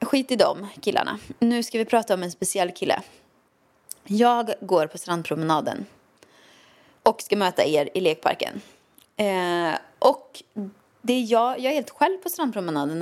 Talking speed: 150 wpm